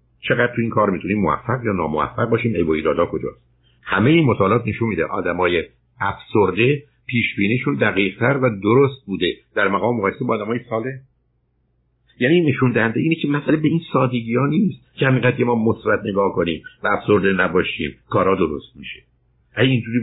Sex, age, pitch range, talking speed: male, 60-79, 95-125 Hz, 165 wpm